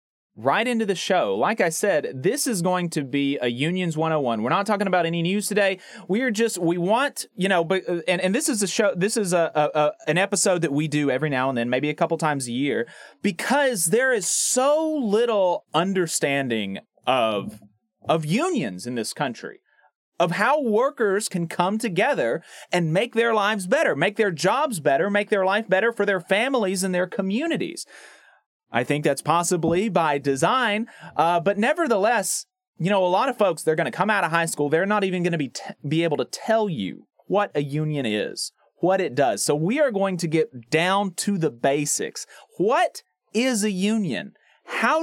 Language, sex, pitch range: English, male, 160-225 Hz